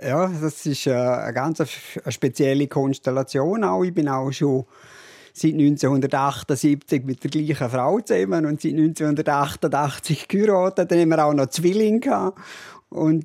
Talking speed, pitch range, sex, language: 150 wpm, 140-165 Hz, male, German